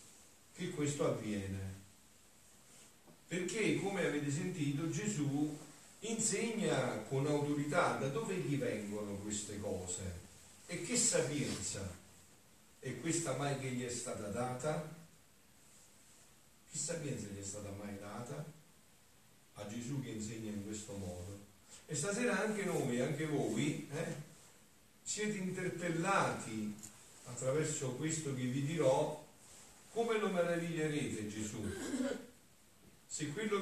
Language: Italian